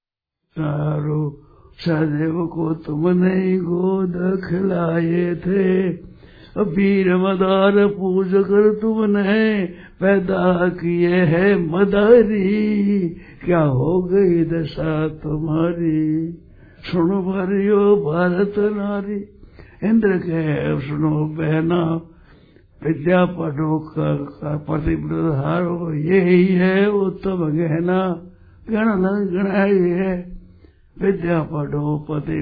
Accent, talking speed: native, 90 wpm